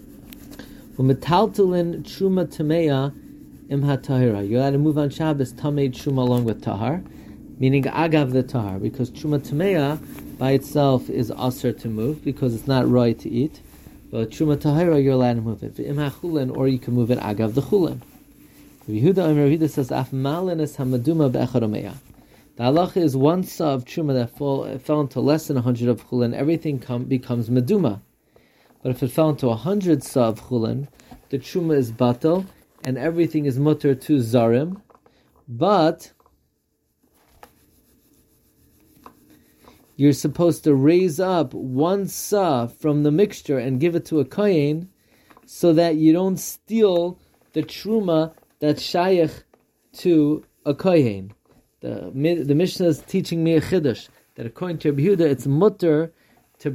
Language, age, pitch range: English, 30-49, 130-165 Hz